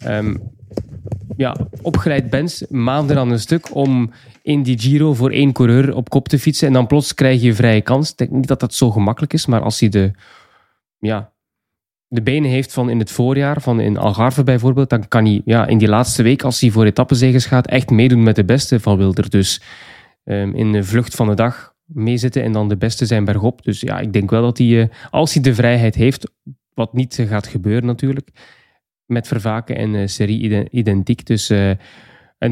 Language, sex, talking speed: Dutch, male, 205 wpm